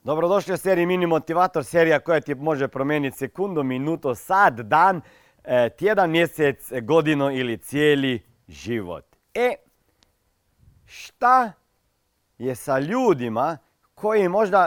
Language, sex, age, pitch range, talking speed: Croatian, male, 40-59, 135-225 Hz, 105 wpm